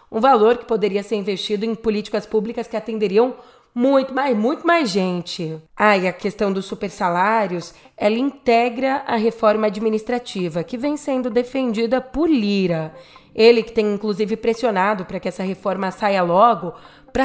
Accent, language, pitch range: Brazilian, Portuguese, 195-250 Hz